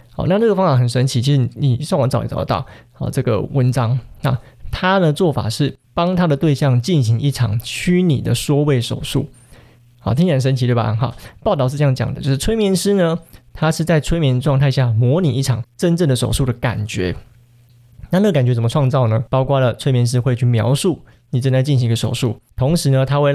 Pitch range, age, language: 120-150 Hz, 20-39, Chinese